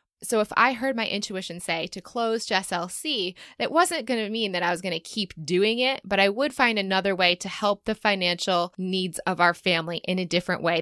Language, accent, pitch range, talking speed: English, American, 175-220 Hz, 220 wpm